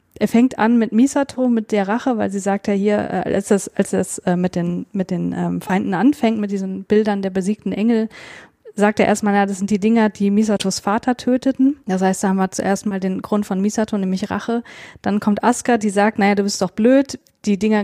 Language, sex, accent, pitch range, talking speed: German, female, German, 200-225 Hz, 225 wpm